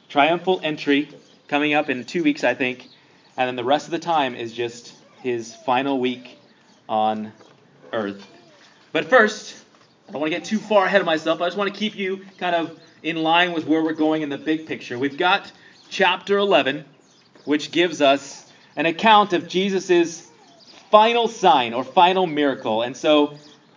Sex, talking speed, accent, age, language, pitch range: male, 180 wpm, American, 30-49, English, 145-190 Hz